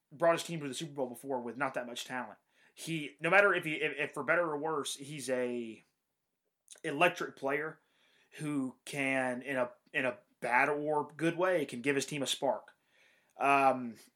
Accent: American